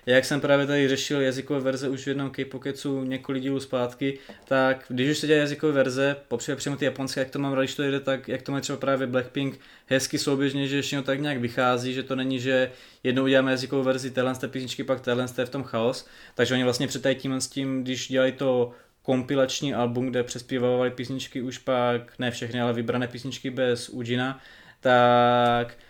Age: 20-39